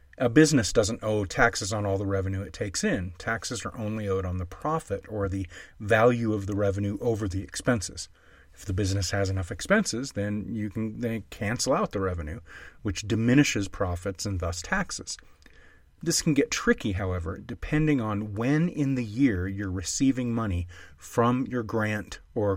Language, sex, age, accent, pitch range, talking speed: English, male, 30-49, American, 95-120 Hz, 175 wpm